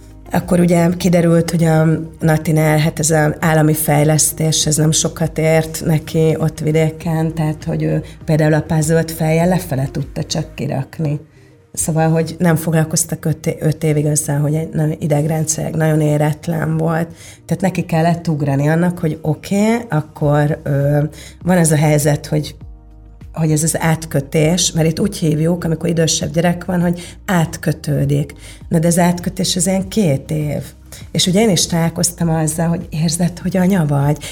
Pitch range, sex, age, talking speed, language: 155-175 Hz, female, 30-49, 160 wpm, Hungarian